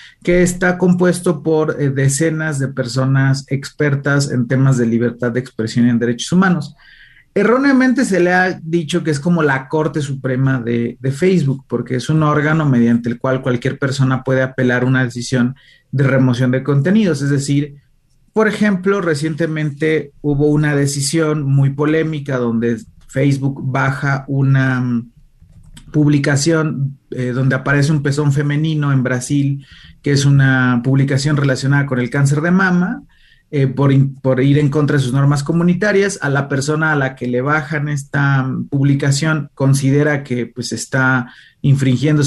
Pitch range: 130-155 Hz